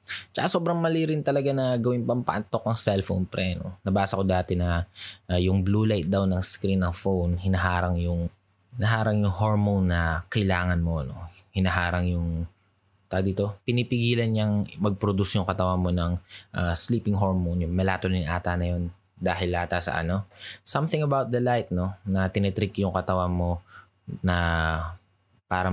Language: Filipino